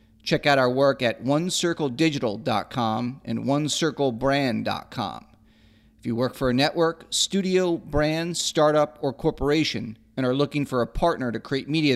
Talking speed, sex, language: 140 wpm, male, English